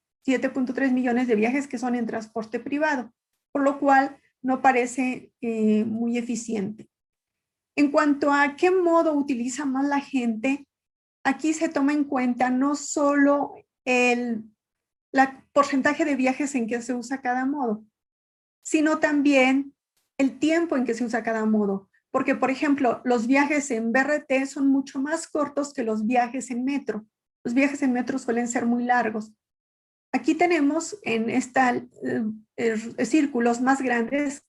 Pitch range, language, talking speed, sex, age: 235-280 Hz, Spanish, 150 wpm, female, 40-59